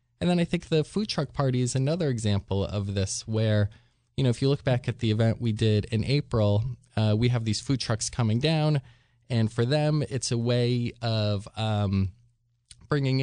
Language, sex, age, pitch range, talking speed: English, male, 20-39, 105-125 Hz, 200 wpm